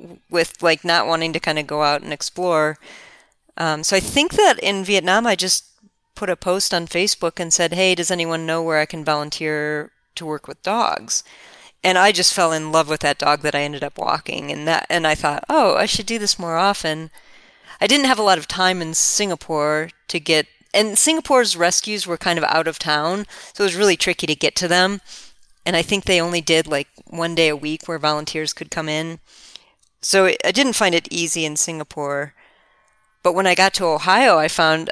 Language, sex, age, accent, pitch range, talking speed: English, female, 40-59, American, 155-190 Hz, 215 wpm